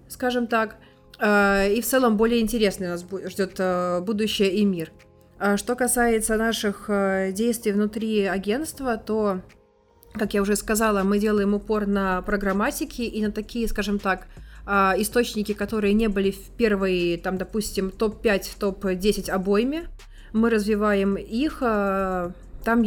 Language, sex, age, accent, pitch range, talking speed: Russian, female, 20-39, native, 195-225 Hz, 125 wpm